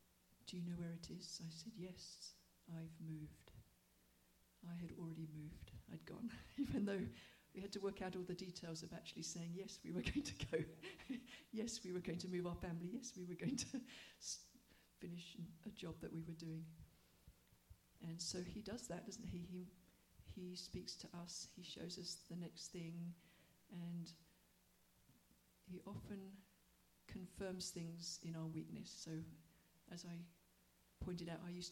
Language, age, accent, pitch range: English, 50-69, British, 160-180 Hz